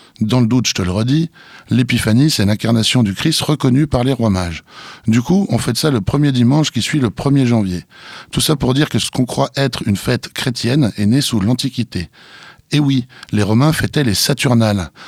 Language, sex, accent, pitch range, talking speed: French, male, French, 105-140 Hz, 210 wpm